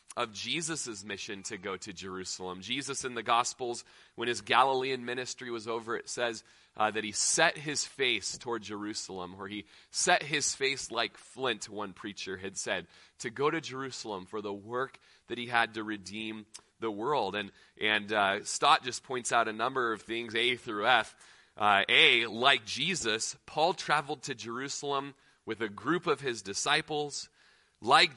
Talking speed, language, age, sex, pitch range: 175 wpm, English, 30-49, male, 105-140 Hz